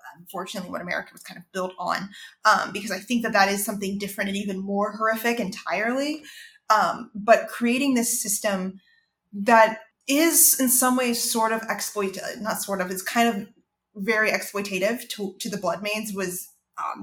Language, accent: English, American